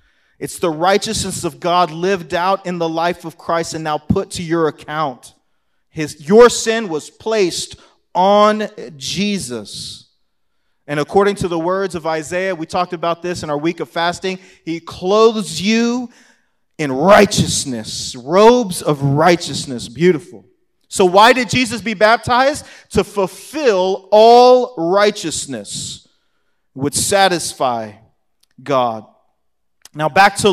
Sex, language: male, English